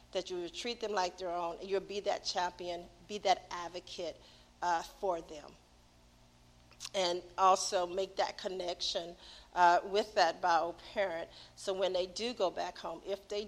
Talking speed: 165 wpm